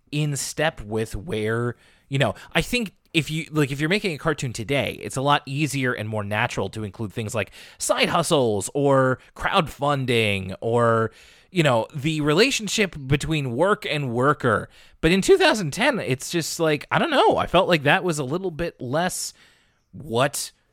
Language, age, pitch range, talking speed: English, 30-49, 125-175 Hz, 175 wpm